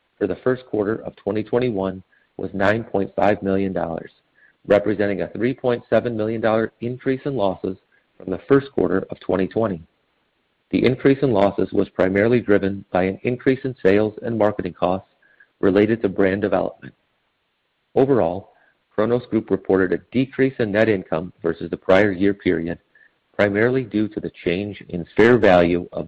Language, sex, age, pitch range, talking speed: English, male, 50-69, 90-115 Hz, 145 wpm